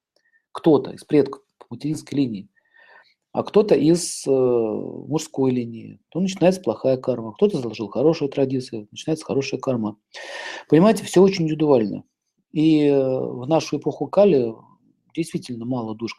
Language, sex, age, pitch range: Russian, male, 40-59, 120-155 Hz